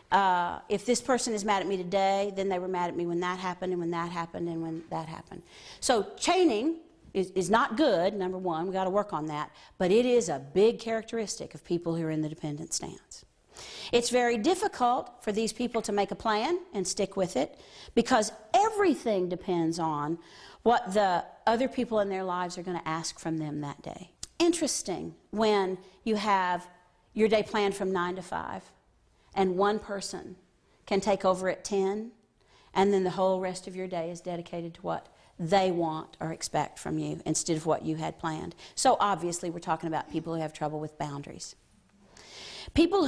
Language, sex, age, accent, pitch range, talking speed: English, female, 50-69, American, 170-220 Hz, 200 wpm